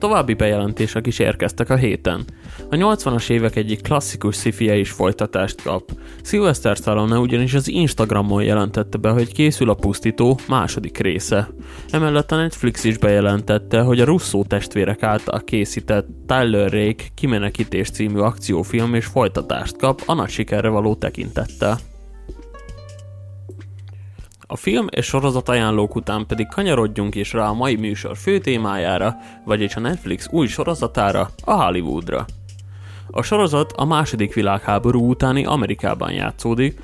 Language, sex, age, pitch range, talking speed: Hungarian, male, 20-39, 100-125 Hz, 135 wpm